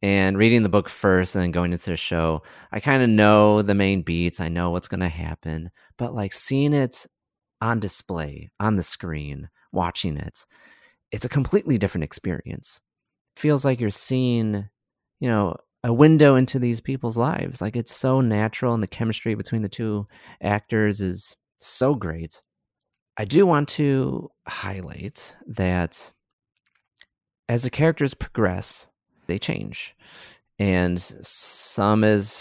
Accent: American